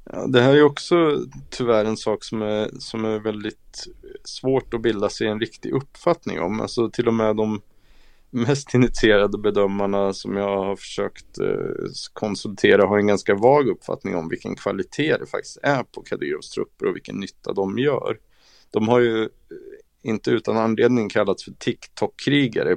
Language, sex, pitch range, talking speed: Swedish, male, 100-120 Hz, 165 wpm